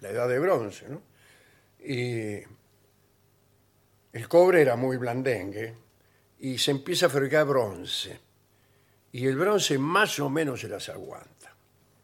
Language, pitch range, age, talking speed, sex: Spanish, 110-170 Hz, 60-79, 130 wpm, male